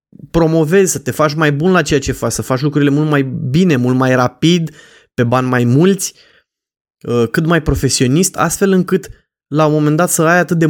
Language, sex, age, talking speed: Romanian, male, 20-39, 200 wpm